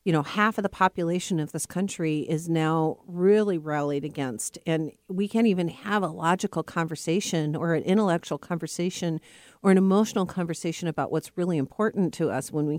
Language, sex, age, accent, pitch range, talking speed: English, female, 50-69, American, 150-185 Hz, 180 wpm